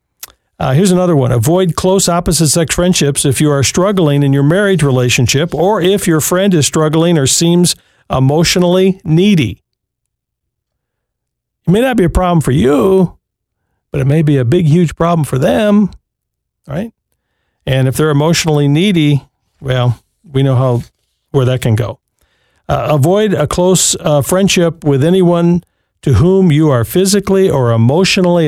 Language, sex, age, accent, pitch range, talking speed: English, male, 50-69, American, 135-180 Hz, 155 wpm